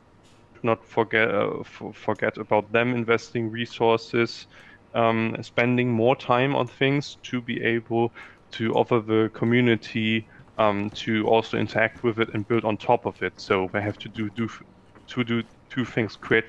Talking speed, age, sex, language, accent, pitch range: 165 wpm, 20-39, male, English, German, 110-120 Hz